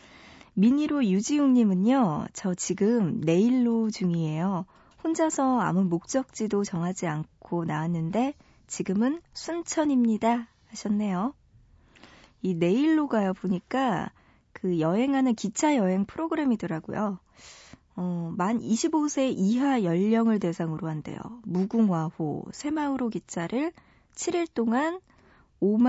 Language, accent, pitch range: Korean, native, 185-260 Hz